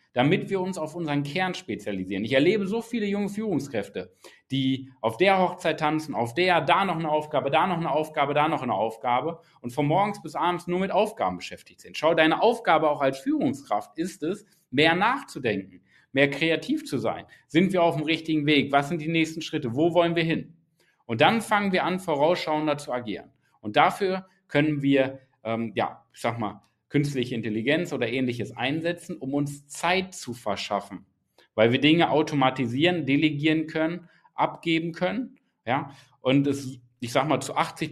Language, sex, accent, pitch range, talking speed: German, male, German, 135-175 Hz, 180 wpm